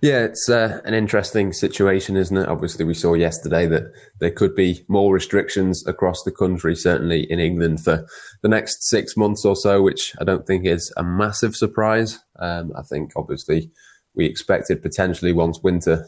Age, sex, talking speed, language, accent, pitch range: 20-39, male, 180 wpm, English, British, 85-100 Hz